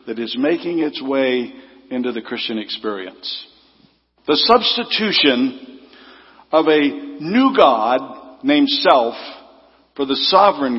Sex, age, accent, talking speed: male, 60-79, American, 110 wpm